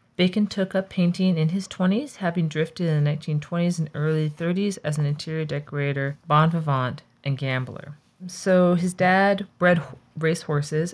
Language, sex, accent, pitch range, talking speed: English, female, American, 140-175 Hz, 155 wpm